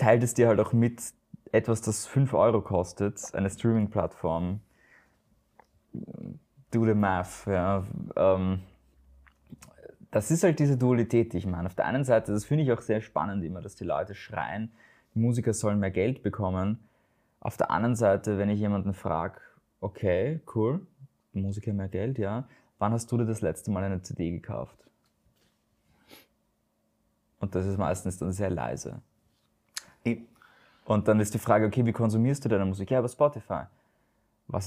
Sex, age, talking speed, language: male, 20-39, 160 wpm, German